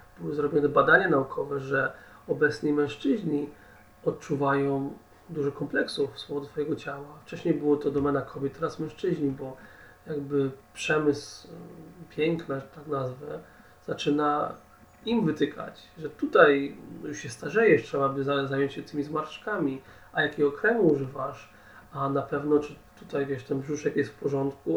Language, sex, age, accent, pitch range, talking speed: Polish, male, 40-59, native, 135-150 Hz, 135 wpm